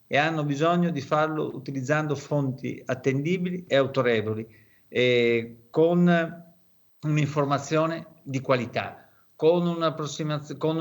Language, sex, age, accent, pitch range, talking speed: Italian, male, 50-69, native, 130-165 Hz, 100 wpm